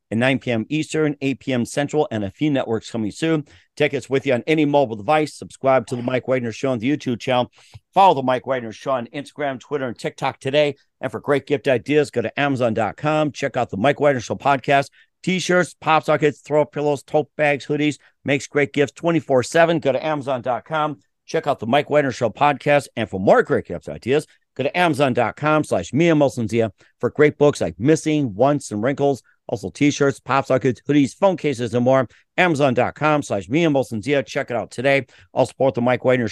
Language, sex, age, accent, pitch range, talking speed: English, male, 50-69, American, 120-145 Hz, 195 wpm